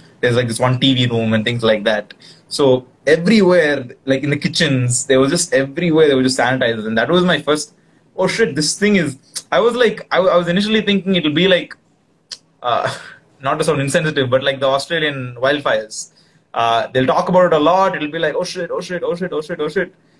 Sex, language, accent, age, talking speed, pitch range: male, Tamil, native, 20-39, 230 wpm, 135-180 Hz